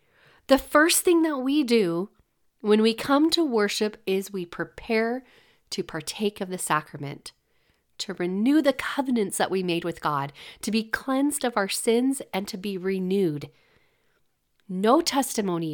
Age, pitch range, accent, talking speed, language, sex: 40-59, 200-270 Hz, American, 155 wpm, English, female